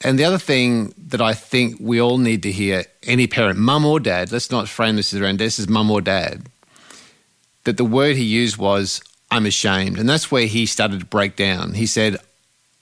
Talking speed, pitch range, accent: 225 wpm, 110-125 Hz, Australian